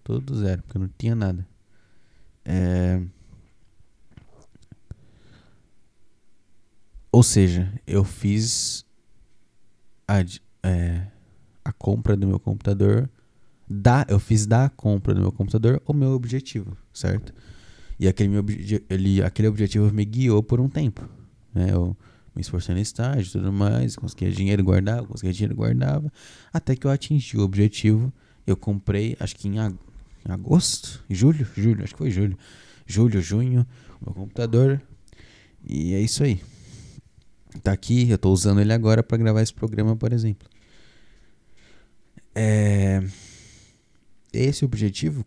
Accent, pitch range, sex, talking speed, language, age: Brazilian, 95-120 Hz, male, 135 wpm, Portuguese, 20-39